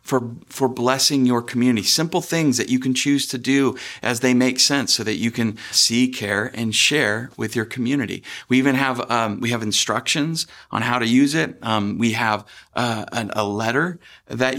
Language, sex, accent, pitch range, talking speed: English, male, American, 110-130 Hz, 195 wpm